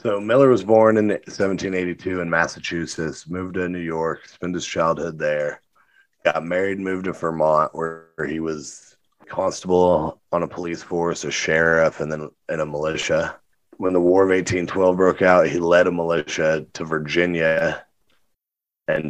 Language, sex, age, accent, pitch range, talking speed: English, male, 30-49, American, 75-90 Hz, 155 wpm